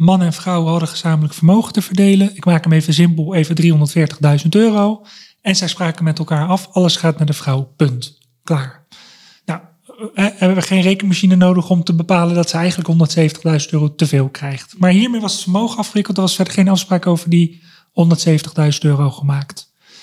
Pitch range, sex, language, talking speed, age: 160-195 Hz, male, Dutch, 185 wpm, 30-49